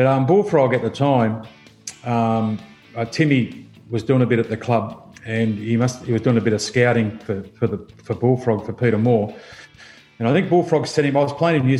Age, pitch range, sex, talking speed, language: 40-59, 115-130 Hz, male, 230 wpm, English